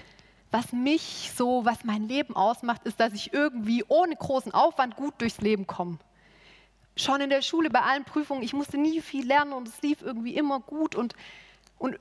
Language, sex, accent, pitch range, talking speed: German, female, German, 210-265 Hz, 190 wpm